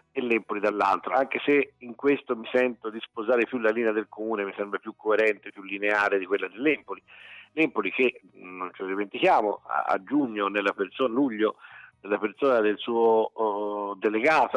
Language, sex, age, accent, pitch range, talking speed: Italian, male, 50-69, native, 110-155 Hz, 175 wpm